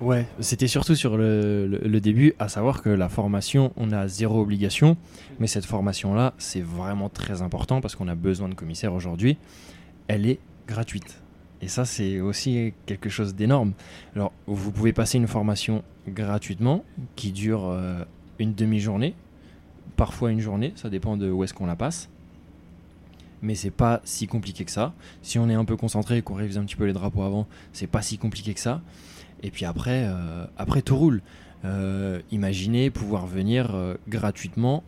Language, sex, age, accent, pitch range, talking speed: French, male, 20-39, French, 90-115 Hz, 180 wpm